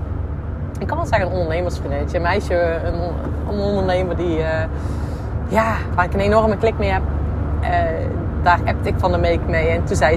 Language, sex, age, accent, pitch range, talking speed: Dutch, female, 20-39, Dutch, 75-95 Hz, 185 wpm